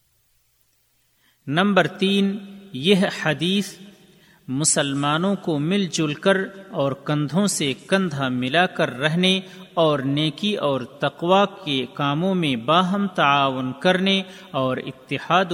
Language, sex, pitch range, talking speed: Urdu, male, 140-190 Hz, 110 wpm